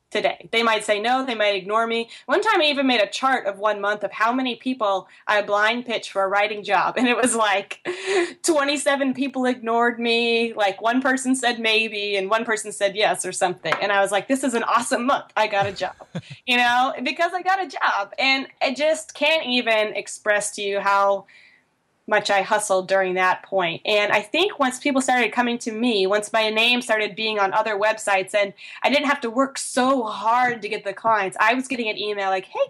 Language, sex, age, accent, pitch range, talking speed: English, female, 20-39, American, 200-260 Hz, 225 wpm